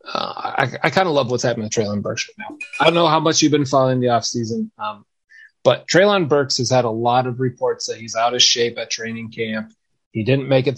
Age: 30-49